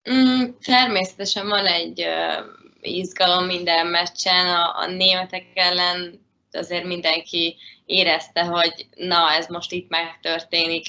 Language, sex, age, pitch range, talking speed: Hungarian, female, 20-39, 165-180 Hz, 100 wpm